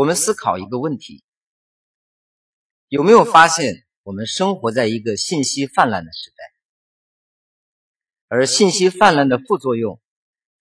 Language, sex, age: Chinese, male, 50-69